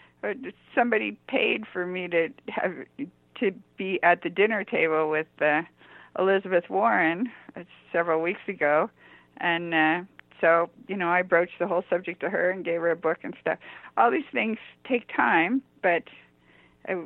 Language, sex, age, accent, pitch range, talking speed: English, female, 50-69, American, 160-205 Hz, 160 wpm